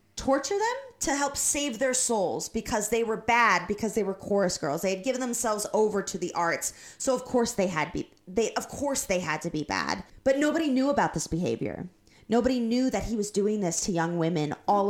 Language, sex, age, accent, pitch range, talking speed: English, female, 20-39, American, 175-230 Hz, 220 wpm